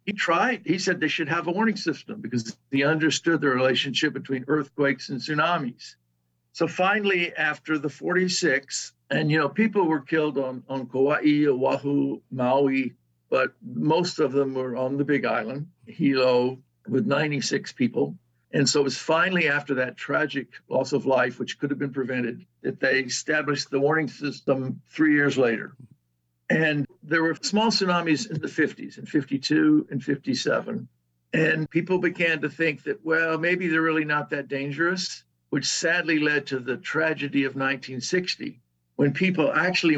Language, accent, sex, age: English, American, male, 60-79